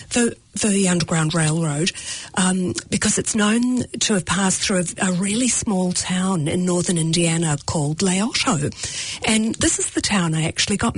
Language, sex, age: English, female, 40-59